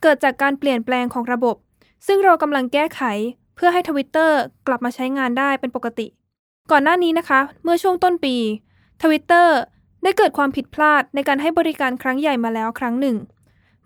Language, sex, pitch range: Thai, female, 245-310 Hz